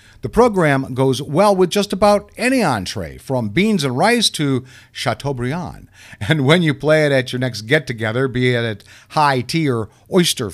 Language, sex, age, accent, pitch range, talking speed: English, male, 50-69, American, 125-160 Hz, 175 wpm